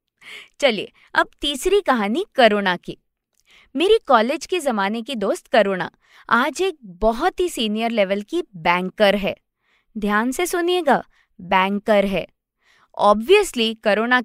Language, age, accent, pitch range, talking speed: Hindi, 20-39, native, 210-290 Hz, 55 wpm